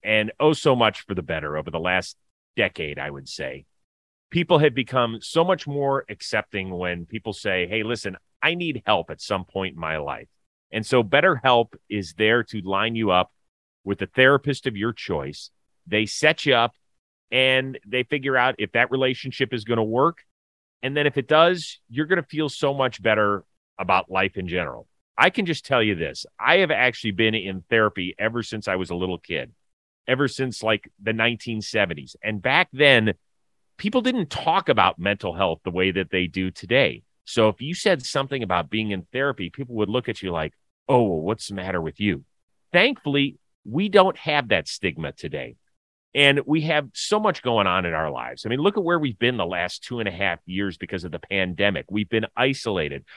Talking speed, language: 205 wpm, English